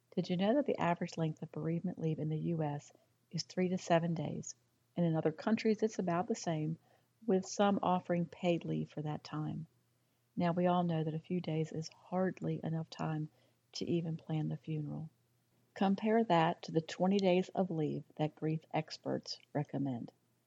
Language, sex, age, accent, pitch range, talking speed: English, female, 50-69, American, 150-185 Hz, 185 wpm